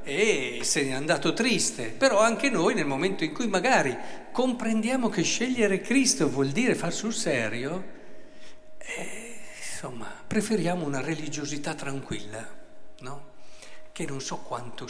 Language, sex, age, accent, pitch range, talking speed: Italian, male, 50-69, native, 135-205 Hz, 135 wpm